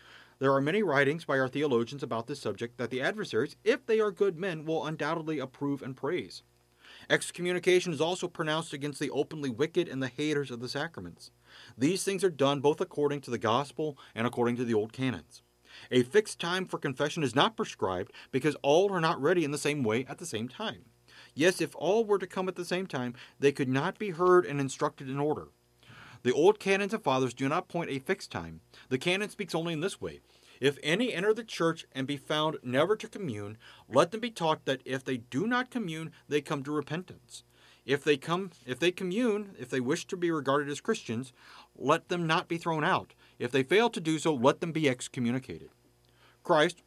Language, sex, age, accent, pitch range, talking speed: English, male, 40-59, American, 125-170 Hz, 215 wpm